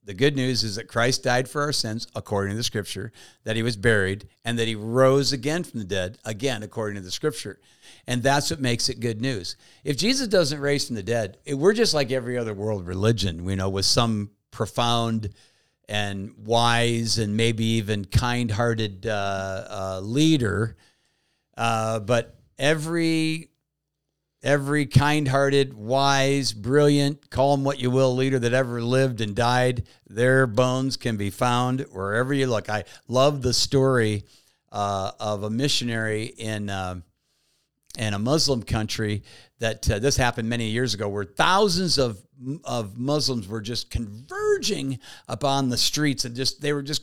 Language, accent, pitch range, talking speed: English, American, 110-145 Hz, 165 wpm